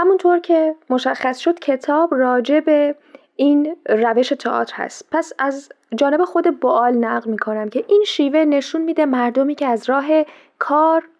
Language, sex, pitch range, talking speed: Persian, female, 220-285 Hz, 155 wpm